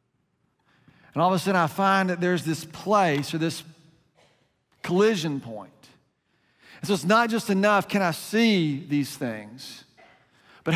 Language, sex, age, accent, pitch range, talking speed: English, male, 40-59, American, 155-190 Hz, 150 wpm